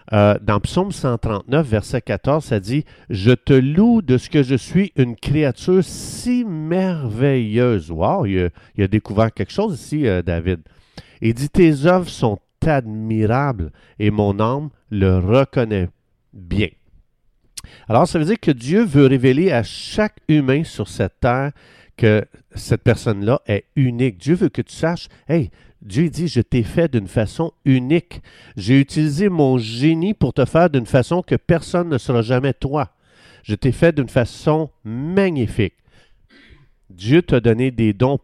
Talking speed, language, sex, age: 160 wpm, French, male, 50-69